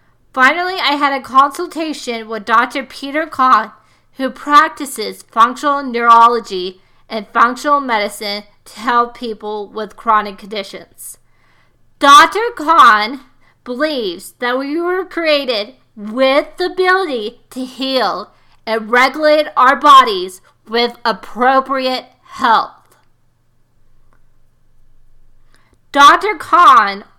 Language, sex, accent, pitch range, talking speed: English, female, American, 225-295 Hz, 95 wpm